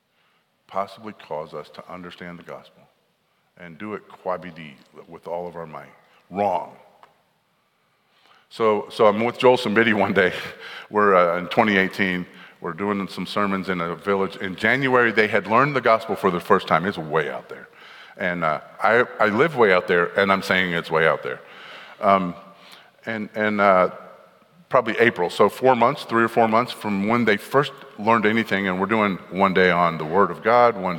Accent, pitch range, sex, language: American, 90-110 Hz, male, English